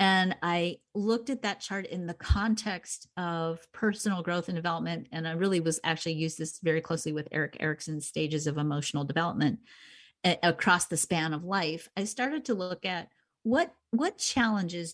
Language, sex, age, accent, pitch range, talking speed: English, female, 40-59, American, 170-225 Hz, 175 wpm